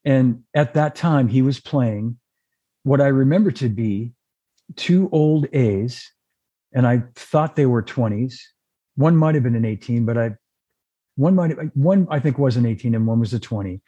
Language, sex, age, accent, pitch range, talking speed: English, male, 50-69, American, 110-135 Hz, 175 wpm